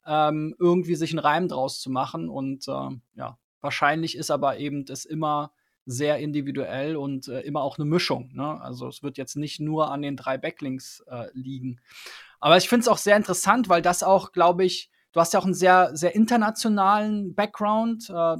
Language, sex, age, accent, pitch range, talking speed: German, male, 20-39, German, 155-185 Hz, 190 wpm